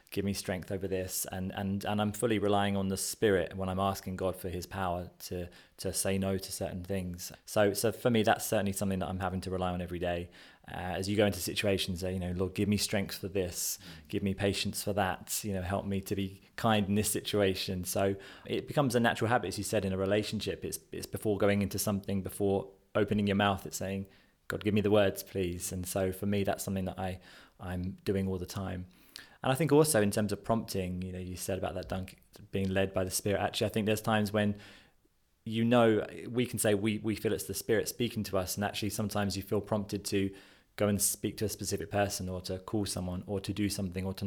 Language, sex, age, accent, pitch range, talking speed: English, male, 20-39, British, 95-105 Hz, 245 wpm